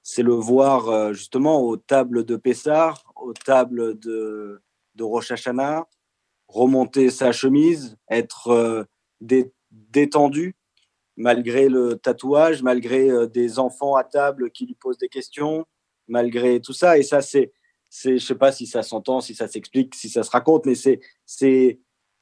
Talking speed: 150 wpm